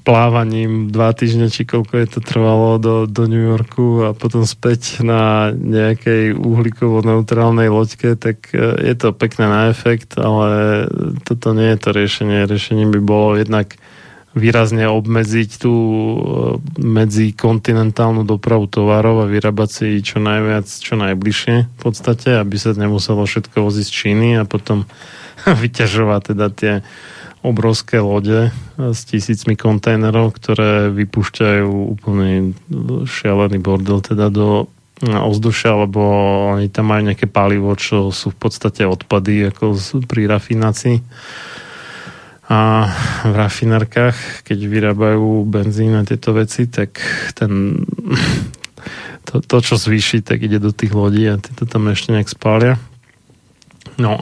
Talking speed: 130 wpm